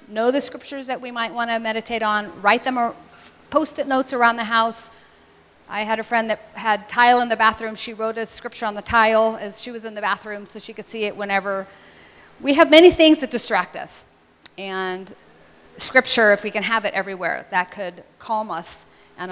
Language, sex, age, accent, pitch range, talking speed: English, female, 40-59, American, 180-230 Hz, 210 wpm